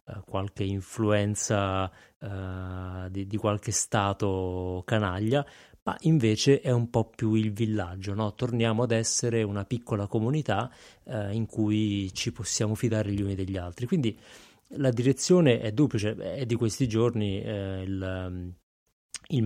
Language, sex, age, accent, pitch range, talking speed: Italian, male, 30-49, native, 100-115 Hz, 130 wpm